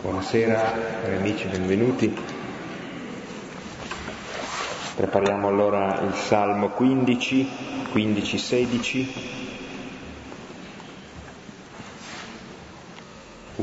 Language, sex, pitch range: Italian, male, 95-105 Hz